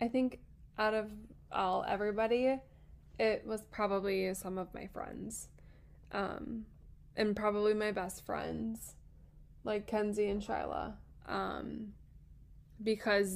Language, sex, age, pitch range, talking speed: English, female, 10-29, 195-220 Hz, 110 wpm